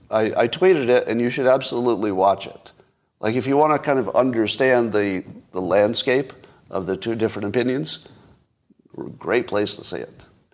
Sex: male